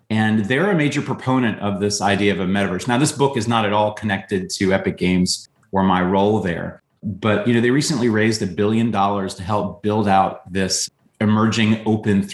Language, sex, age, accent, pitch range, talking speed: English, male, 30-49, American, 100-120 Hz, 205 wpm